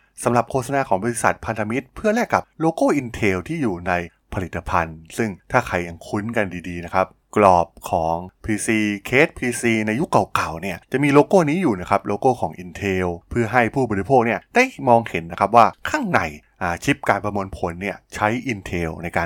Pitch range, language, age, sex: 95-120 Hz, Thai, 20-39, male